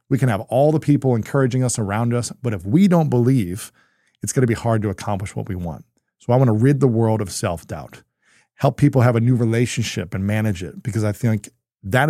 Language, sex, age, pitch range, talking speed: English, male, 40-59, 105-135 Hz, 225 wpm